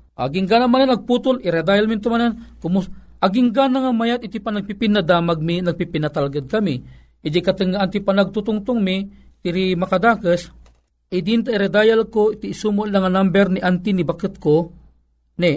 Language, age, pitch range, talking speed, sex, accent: Filipino, 40-59, 170-220 Hz, 160 wpm, male, native